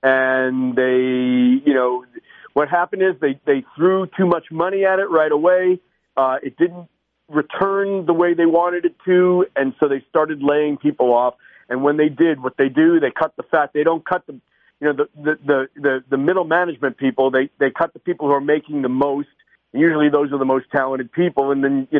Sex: male